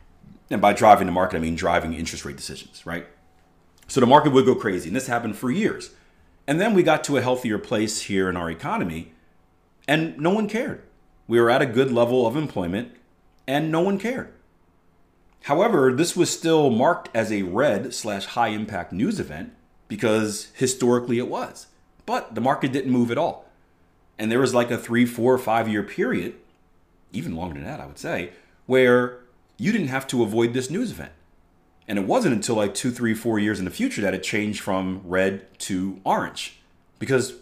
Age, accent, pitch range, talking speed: 40-59, American, 85-125 Hz, 190 wpm